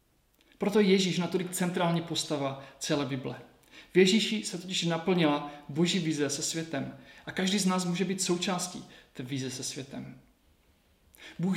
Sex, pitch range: male, 150-190 Hz